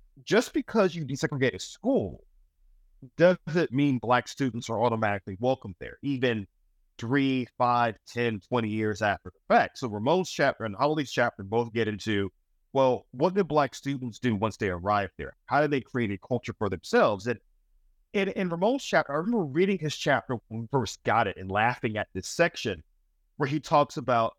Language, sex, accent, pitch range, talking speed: English, male, American, 110-140 Hz, 180 wpm